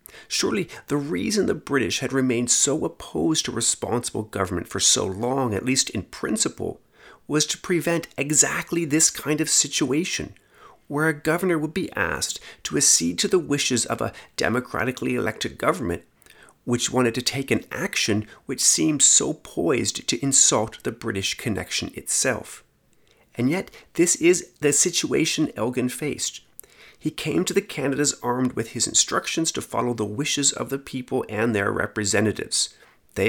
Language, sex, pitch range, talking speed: English, male, 100-135 Hz, 155 wpm